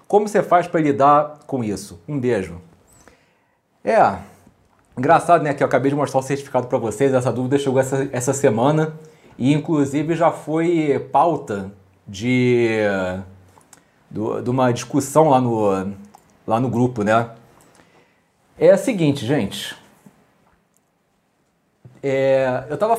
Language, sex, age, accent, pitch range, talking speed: Portuguese, male, 40-59, Brazilian, 120-185 Hz, 125 wpm